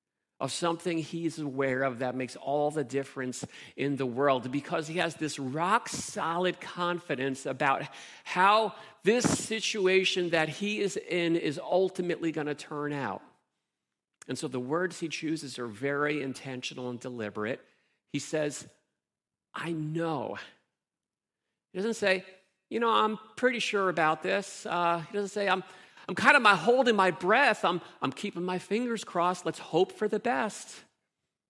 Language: English